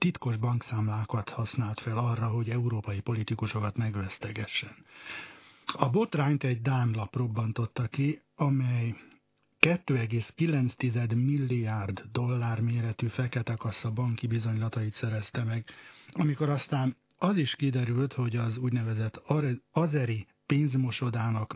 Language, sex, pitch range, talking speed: Hungarian, male, 115-135 Hz, 100 wpm